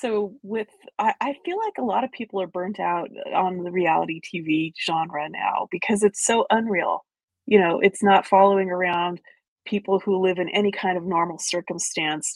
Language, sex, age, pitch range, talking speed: English, female, 30-49, 175-215 Hz, 185 wpm